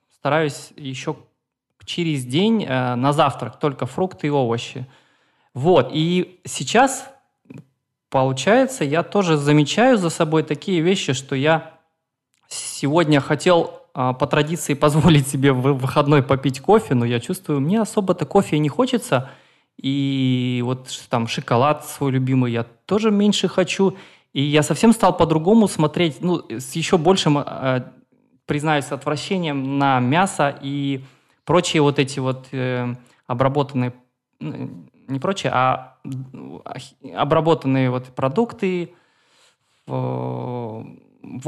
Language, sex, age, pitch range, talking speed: Russian, male, 20-39, 130-170 Hz, 115 wpm